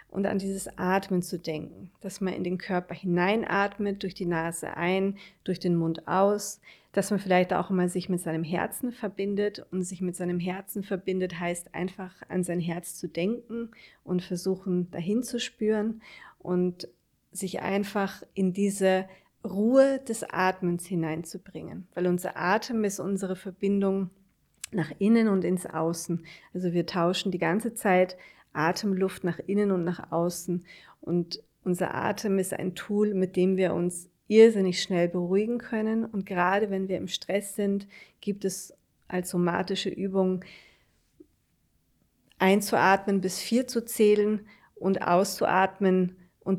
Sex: female